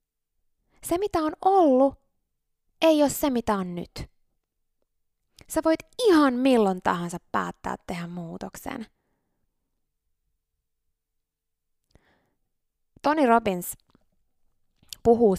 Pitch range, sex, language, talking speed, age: 175-220 Hz, female, Finnish, 80 wpm, 20-39